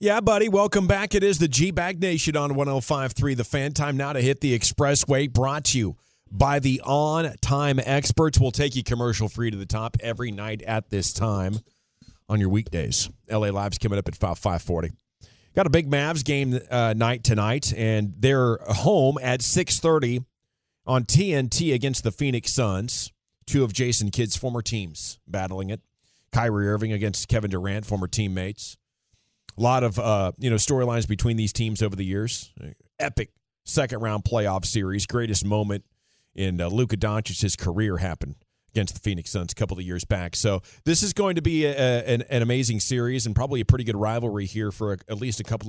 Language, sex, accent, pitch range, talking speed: English, male, American, 100-130 Hz, 185 wpm